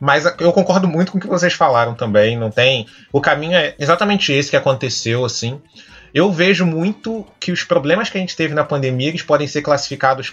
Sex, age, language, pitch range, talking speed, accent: male, 20-39, Portuguese, 145-195 Hz, 210 wpm, Brazilian